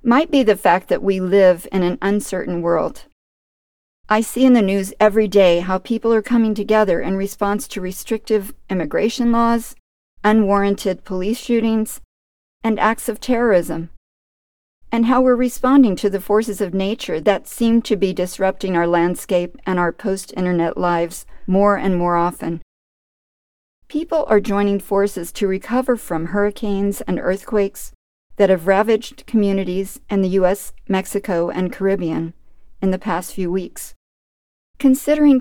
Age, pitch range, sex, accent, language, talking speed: 50-69, 185-225 Hz, female, American, English, 145 wpm